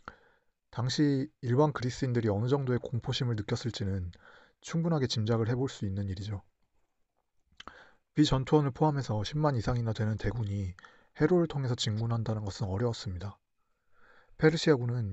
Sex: male